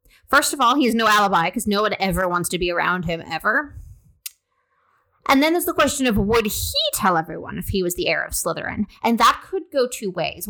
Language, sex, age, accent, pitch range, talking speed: English, female, 30-49, American, 185-240 Hz, 230 wpm